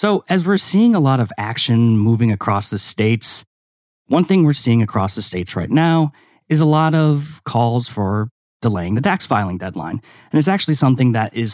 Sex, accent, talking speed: male, American, 200 wpm